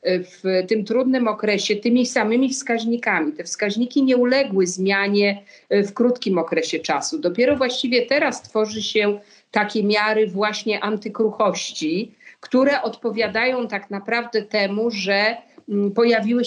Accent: native